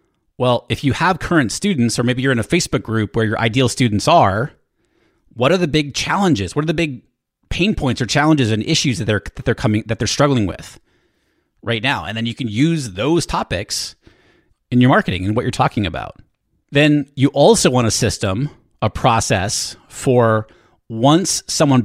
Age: 30-49